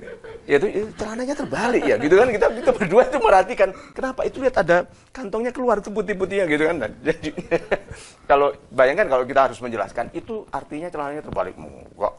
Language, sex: Indonesian, male